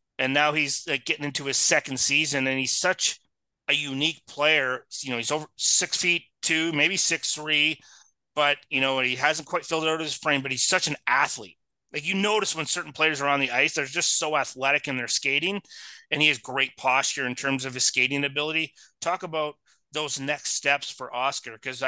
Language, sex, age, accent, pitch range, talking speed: English, male, 30-49, American, 130-160 Hz, 210 wpm